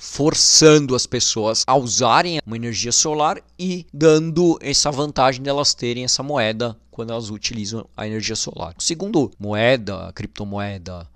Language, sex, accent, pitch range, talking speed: Portuguese, male, Brazilian, 115-155 Hz, 140 wpm